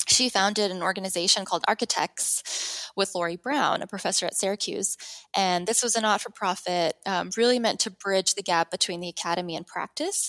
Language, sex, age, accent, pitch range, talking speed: English, female, 10-29, American, 180-235 Hz, 170 wpm